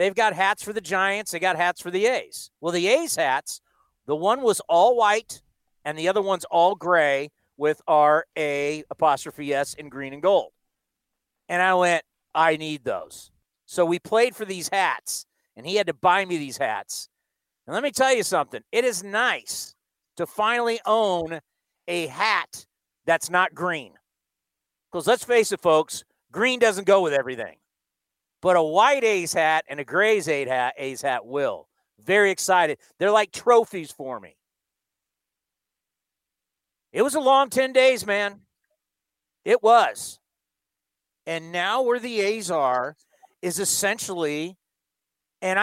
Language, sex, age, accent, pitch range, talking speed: English, male, 50-69, American, 160-225 Hz, 160 wpm